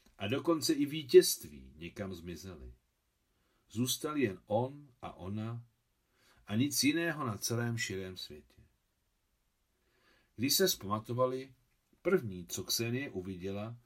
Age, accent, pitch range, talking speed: 50-69, native, 95-130 Hz, 110 wpm